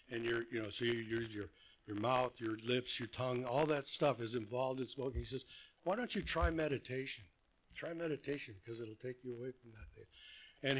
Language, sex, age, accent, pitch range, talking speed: English, male, 60-79, American, 120-155 Hz, 215 wpm